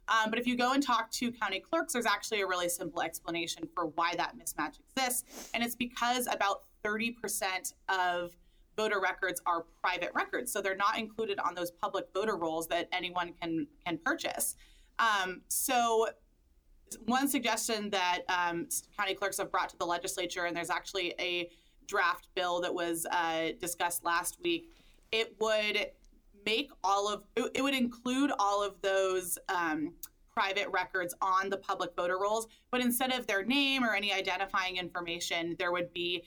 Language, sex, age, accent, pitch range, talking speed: English, female, 20-39, American, 175-225 Hz, 170 wpm